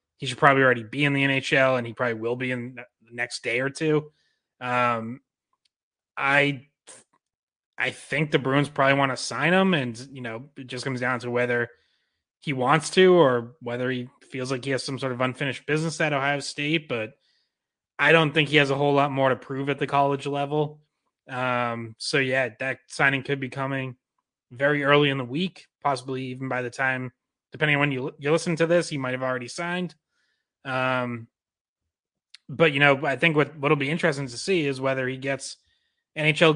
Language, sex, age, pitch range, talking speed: English, male, 20-39, 125-145 Hz, 195 wpm